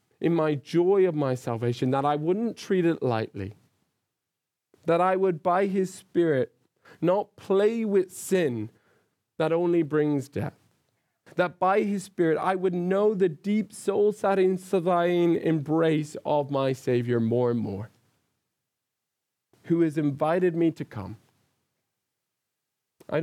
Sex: male